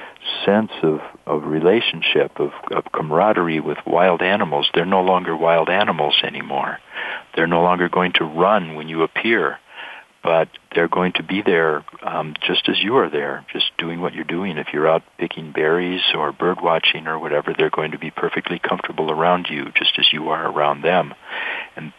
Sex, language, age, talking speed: male, English, 60-79, 185 wpm